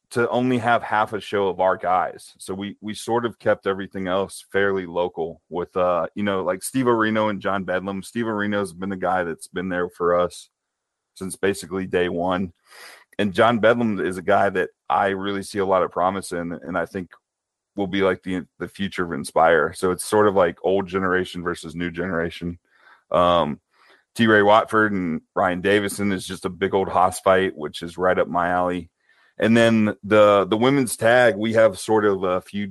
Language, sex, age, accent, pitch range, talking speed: English, male, 30-49, American, 90-105 Hz, 205 wpm